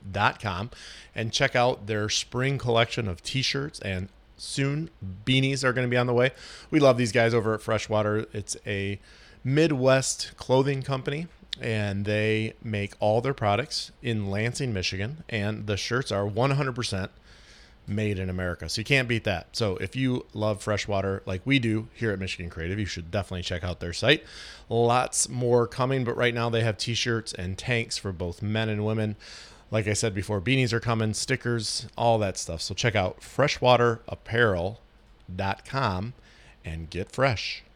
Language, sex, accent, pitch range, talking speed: English, male, American, 100-125 Hz, 170 wpm